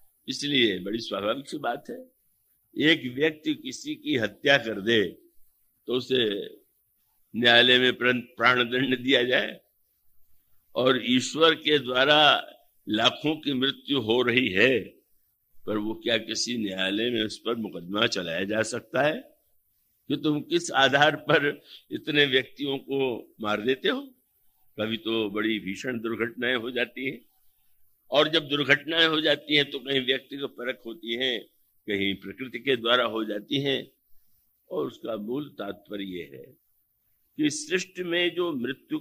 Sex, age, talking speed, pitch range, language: male, 60-79, 145 wpm, 115-155 Hz, Hindi